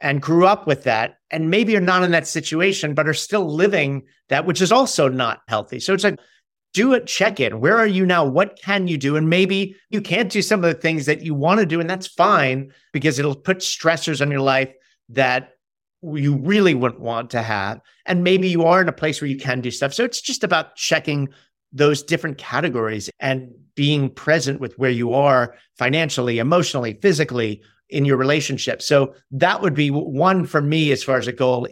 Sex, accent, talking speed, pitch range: male, American, 210 wpm, 125-165 Hz